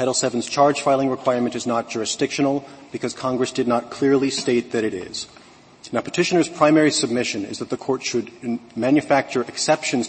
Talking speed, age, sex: 165 wpm, 30-49, male